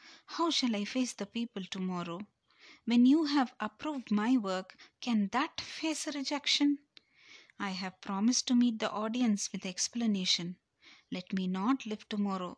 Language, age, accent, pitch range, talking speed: Tamil, 30-49, native, 180-245 Hz, 155 wpm